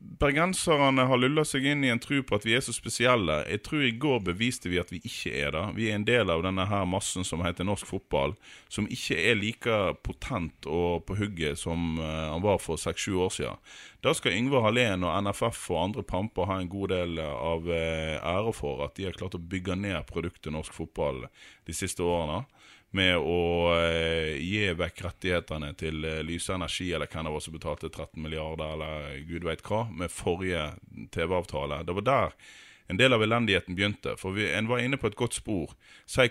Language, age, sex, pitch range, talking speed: English, 30-49, male, 80-105 Hz, 195 wpm